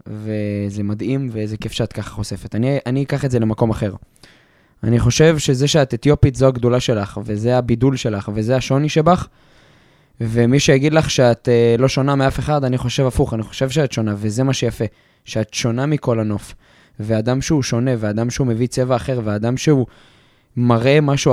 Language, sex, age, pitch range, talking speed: Hebrew, male, 20-39, 115-145 Hz, 175 wpm